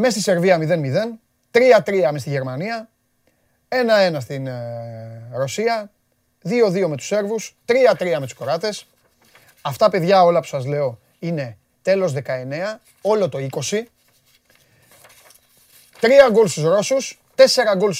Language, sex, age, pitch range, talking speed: Greek, male, 30-49, 140-210 Hz, 100 wpm